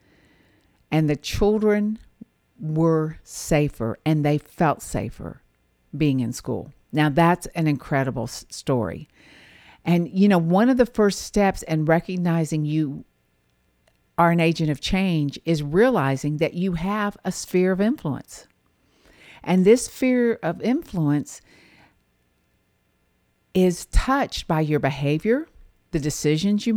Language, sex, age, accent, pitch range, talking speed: English, female, 50-69, American, 145-210 Hz, 125 wpm